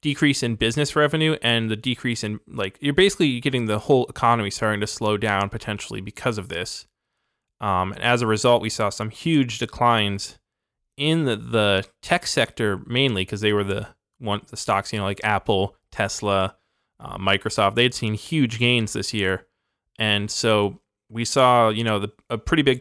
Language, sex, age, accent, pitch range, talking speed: English, male, 20-39, American, 105-125 Hz, 185 wpm